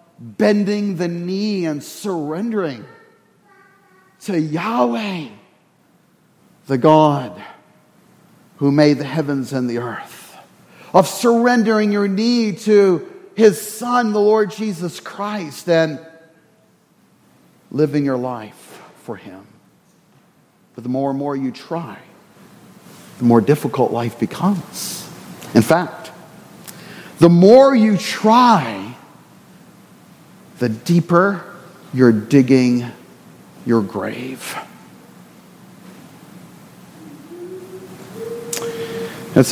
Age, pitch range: 50-69, 135-190 Hz